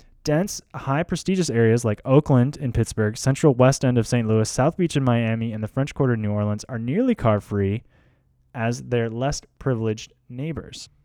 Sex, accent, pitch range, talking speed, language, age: male, American, 110-145 Hz, 180 wpm, English, 10-29